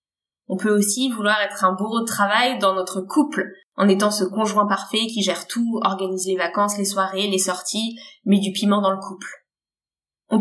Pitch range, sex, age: 190-245 Hz, female, 20-39